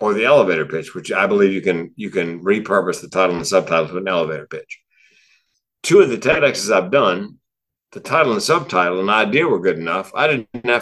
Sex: male